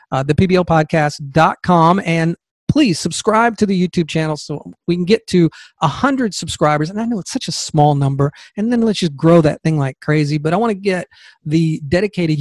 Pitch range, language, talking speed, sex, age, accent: 150-190 Hz, English, 210 wpm, male, 40-59, American